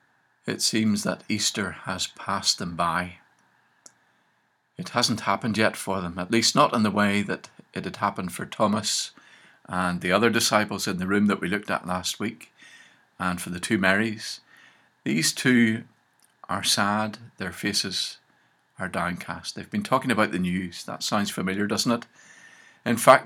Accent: British